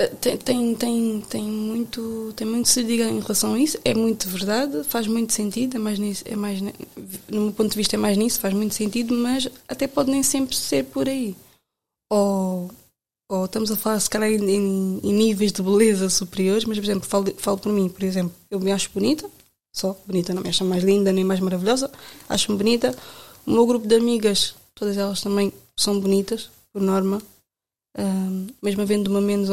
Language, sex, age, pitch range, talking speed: Portuguese, female, 20-39, 195-235 Hz, 205 wpm